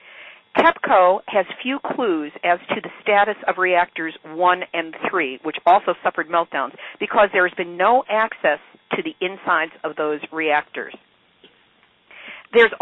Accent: American